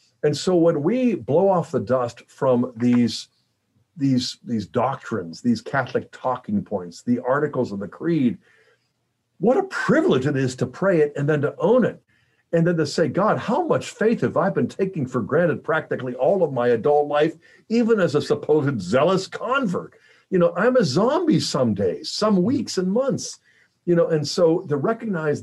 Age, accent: 50-69, American